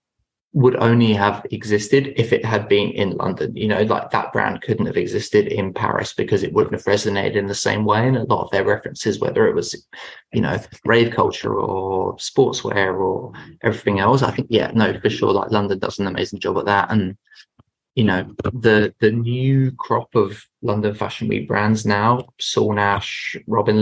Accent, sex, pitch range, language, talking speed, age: British, male, 105-120 Hz, English, 190 wpm, 20-39